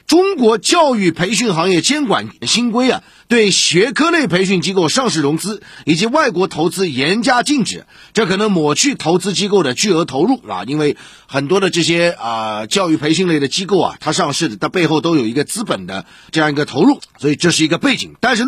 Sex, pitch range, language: male, 150-225 Hz, Chinese